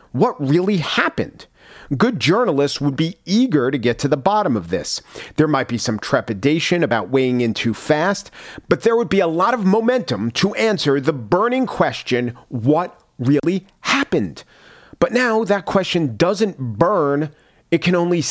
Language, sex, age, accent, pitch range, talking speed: English, male, 40-59, American, 125-175 Hz, 165 wpm